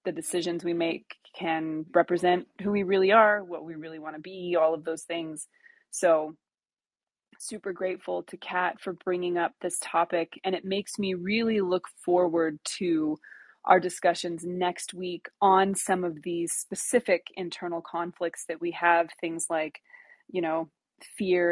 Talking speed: 160 wpm